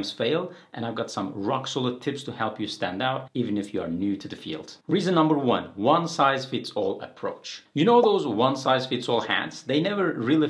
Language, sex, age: English, male, 40-59